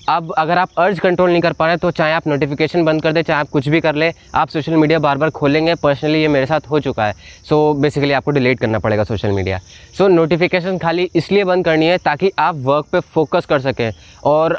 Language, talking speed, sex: Hindi, 245 wpm, male